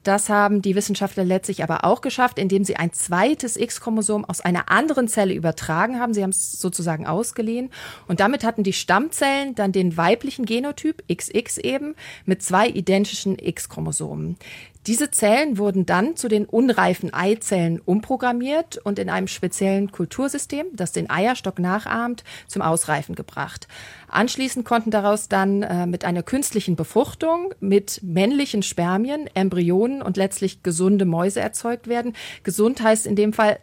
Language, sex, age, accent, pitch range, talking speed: German, female, 40-59, German, 185-230 Hz, 150 wpm